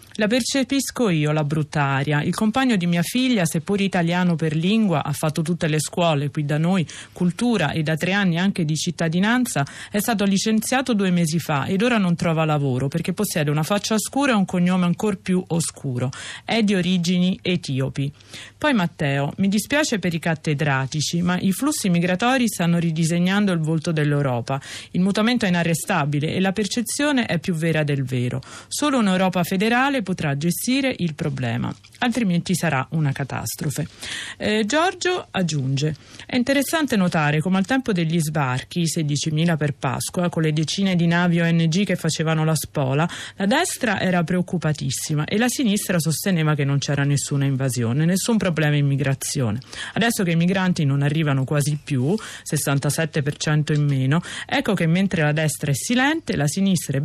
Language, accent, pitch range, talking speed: Italian, native, 145-195 Hz, 165 wpm